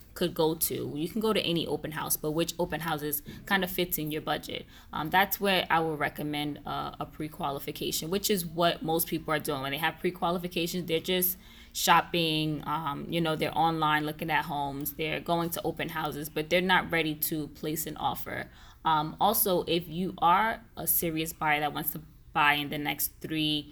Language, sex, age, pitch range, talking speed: English, female, 10-29, 155-180 Hz, 200 wpm